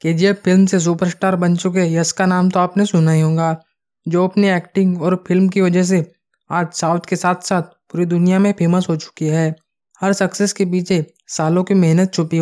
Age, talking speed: 20-39, 210 wpm